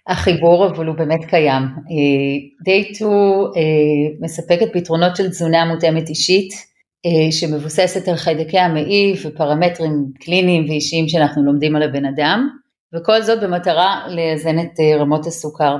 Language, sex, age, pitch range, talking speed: Hebrew, female, 30-49, 150-180 Hz, 120 wpm